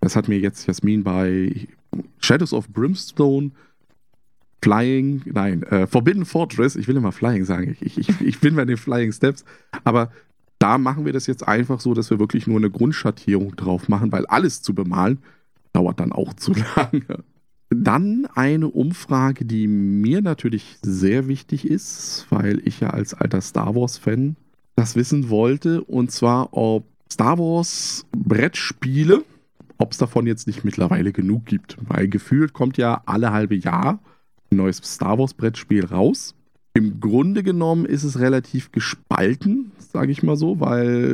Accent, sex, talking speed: German, male, 160 wpm